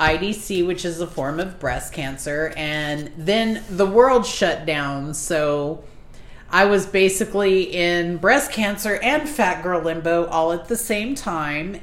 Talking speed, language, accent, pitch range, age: 150 wpm, English, American, 155-195 Hz, 40-59